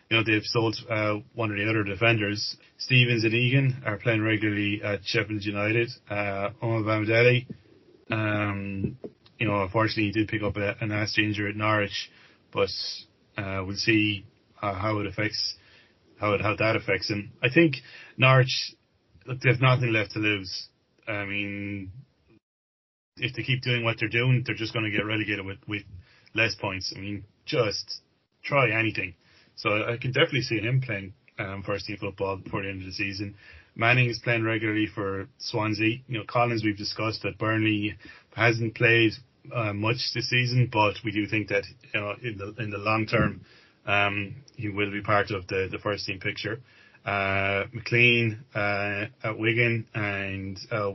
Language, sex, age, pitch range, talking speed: English, male, 30-49, 100-115 Hz, 175 wpm